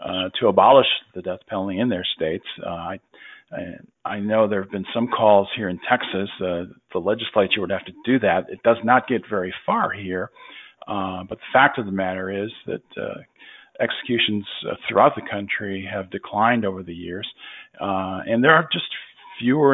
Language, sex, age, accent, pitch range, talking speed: English, male, 50-69, American, 95-115 Hz, 190 wpm